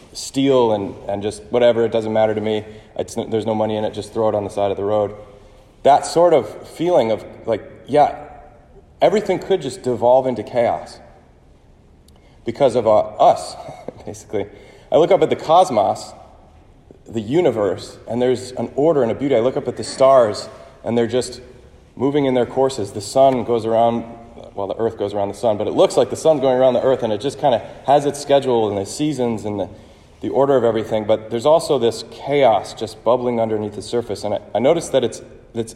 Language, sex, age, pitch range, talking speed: English, male, 30-49, 105-130 Hz, 215 wpm